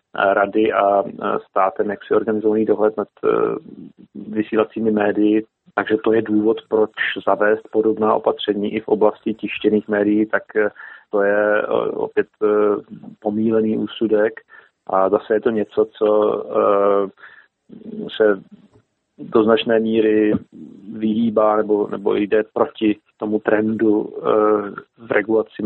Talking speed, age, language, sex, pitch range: 115 wpm, 30-49, Slovak, male, 105-110 Hz